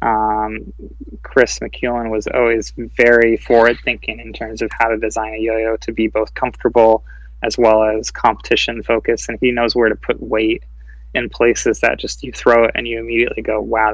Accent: American